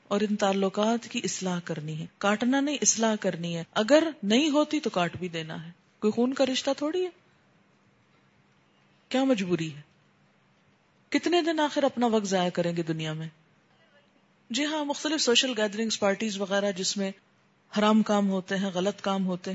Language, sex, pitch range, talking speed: Urdu, female, 185-240 Hz, 170 wpm